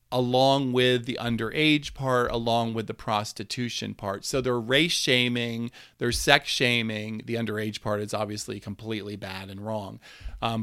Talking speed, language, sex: 150 wpm, English, male